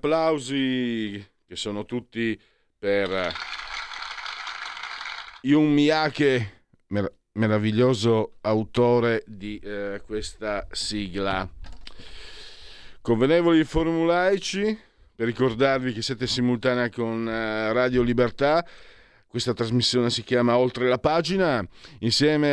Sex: male